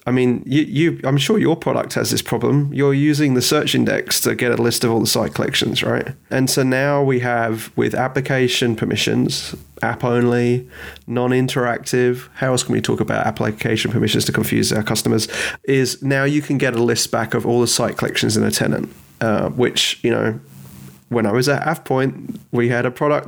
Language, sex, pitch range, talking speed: English, male, 115-135 Hz, 195 wpm